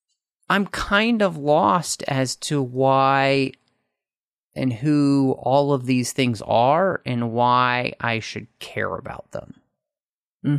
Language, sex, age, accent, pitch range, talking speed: English, male, 30-49, American, 120-150 Hz, 125 wpm